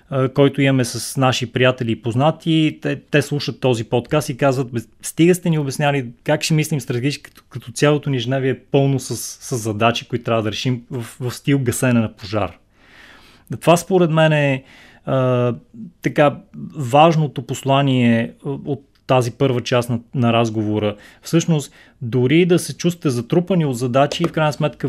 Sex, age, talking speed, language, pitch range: male, 20-39, 165 wpm, Bulgarian, 120-145 Hz